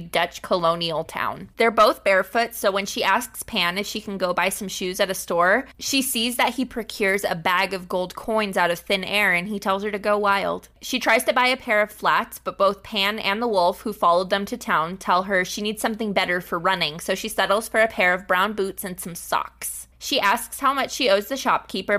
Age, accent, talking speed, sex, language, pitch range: 20-39, American, 245 wpm, female, English, 180-220 Hz